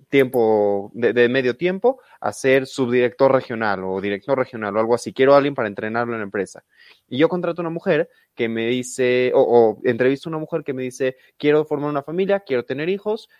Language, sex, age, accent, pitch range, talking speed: Spanish, male, 20-39, Mexican, 125-190 Hz, 215 wpm